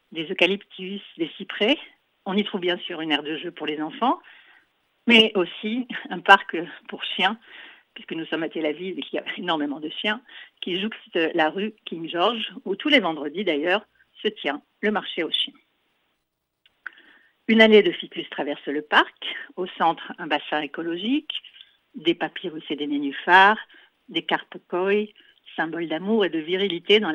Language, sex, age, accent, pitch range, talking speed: French, female, 50-69, French, 165-220 Hz, 170 wpm